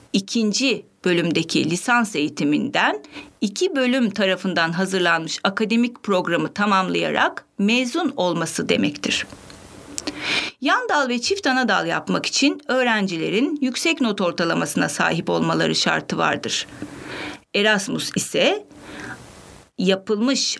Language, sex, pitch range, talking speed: Turkish, female, 175-260 Hz, 90 wpm